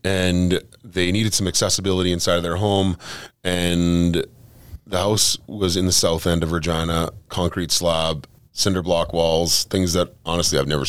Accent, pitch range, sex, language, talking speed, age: American, 80-95 Hz, male, English, 160 wpm, 30-49